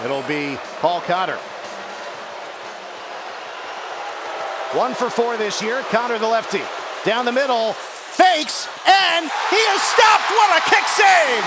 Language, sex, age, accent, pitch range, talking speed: English, male, 40-59, American, 190-275 Hz, 125 wpm